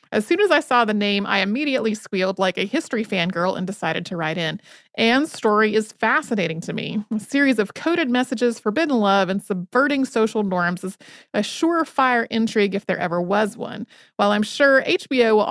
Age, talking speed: 30-49, 195 wpm